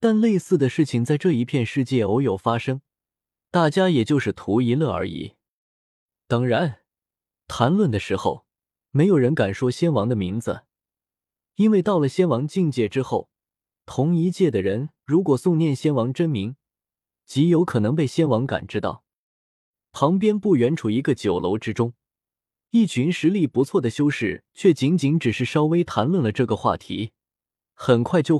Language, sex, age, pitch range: Chinese, male, 20-39, 115-160 Hz